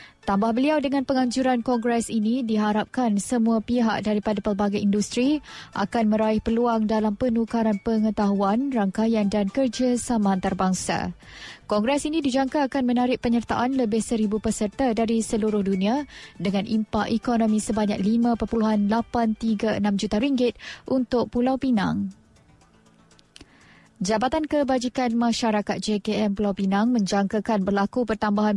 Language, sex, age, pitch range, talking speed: Malay, female, 20-39, 210-240 Hz, 115 wpm